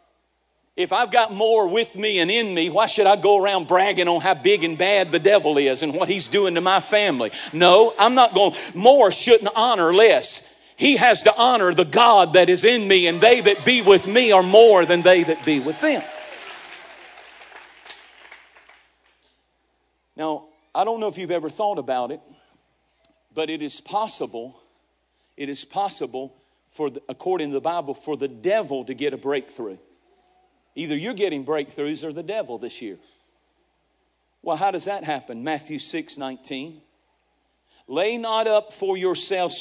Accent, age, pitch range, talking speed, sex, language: American, 50-69, 160-235 Hz, 170 wpm, male, English